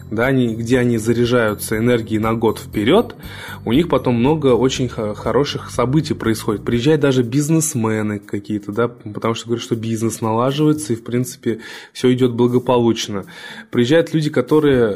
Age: 20-39